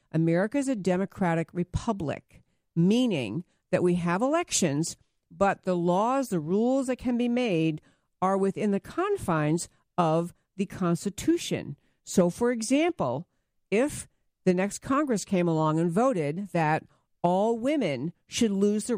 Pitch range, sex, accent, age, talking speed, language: 160-210 Hz, female, American, 50-69, 135 wpm, English